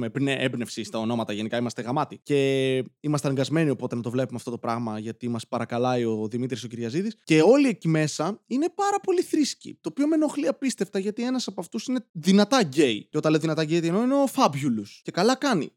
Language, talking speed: Greek, 210 wpm